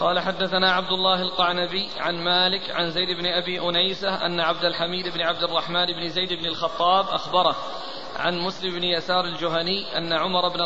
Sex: male